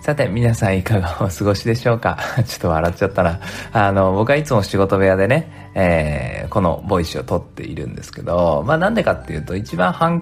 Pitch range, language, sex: 85-125 Hz, Japanese, male